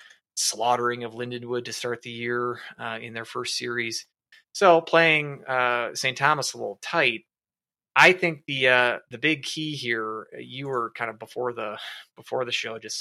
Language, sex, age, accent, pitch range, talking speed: English, male, 20-39, American, 115-135 Hz, 175 wpm